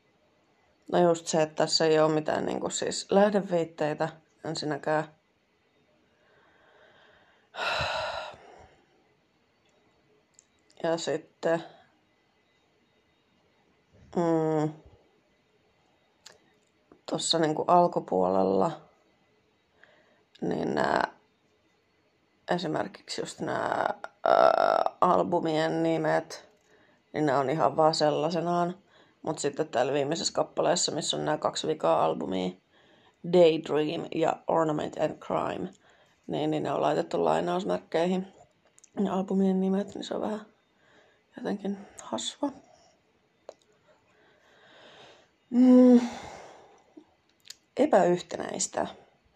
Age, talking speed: 30-49, 80 wpm